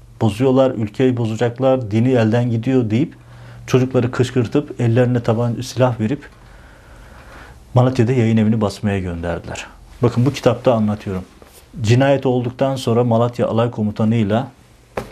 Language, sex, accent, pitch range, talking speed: Turkish, male, native, 105-125 Hz, 110 wpm